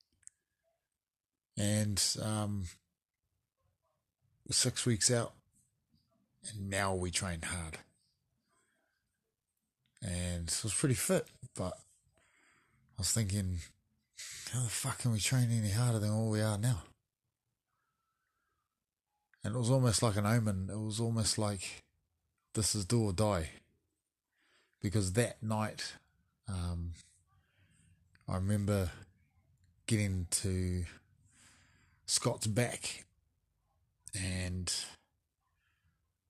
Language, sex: English, male